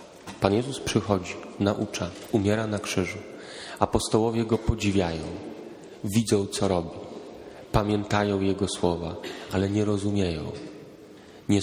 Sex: male